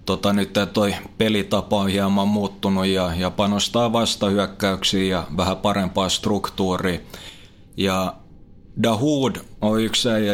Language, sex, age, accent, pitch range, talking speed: Finnish, male, 20-39, native, 95-110 Hz, 115 wpm